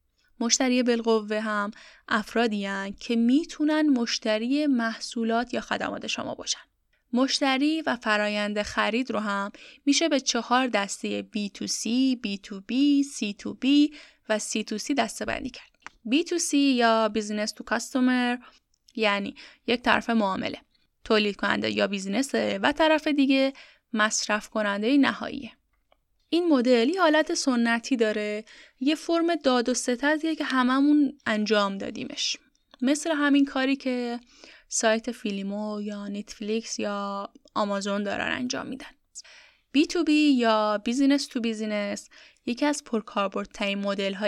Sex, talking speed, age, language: female, 120 wpm, 10-29, Persian